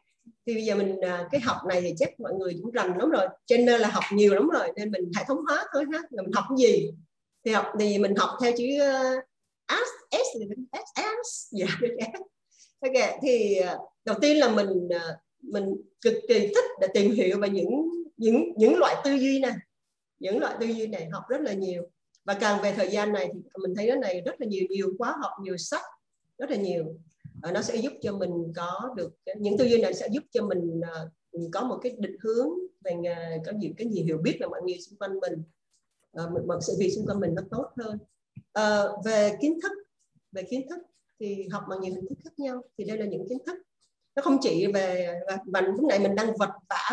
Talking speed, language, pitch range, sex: 220 wpm, Vietnamese, 190-260 Hz, female